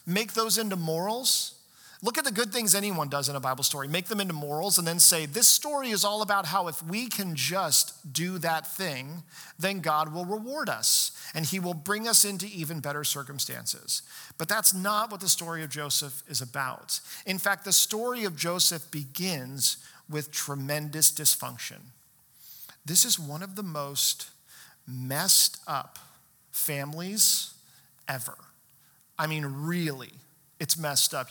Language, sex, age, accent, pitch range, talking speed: English, male, 50-69, American, 150-205 Hz, 165 wpm